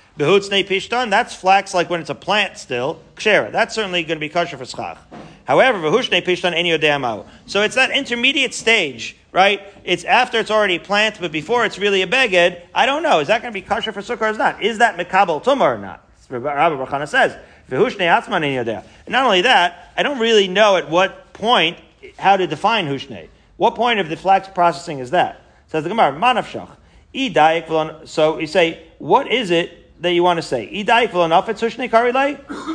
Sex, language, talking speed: male, English, 185 wpm